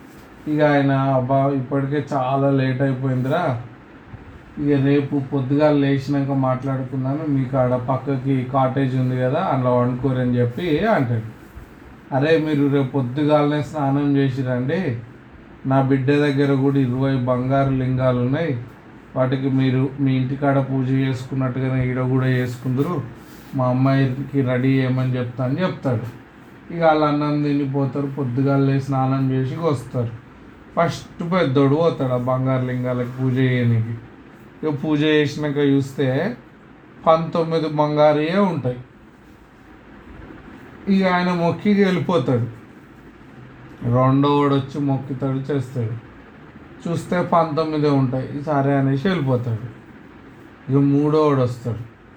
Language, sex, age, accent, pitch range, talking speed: Telugu, male, 30-49, native, 130-145 Hz, 95 wpm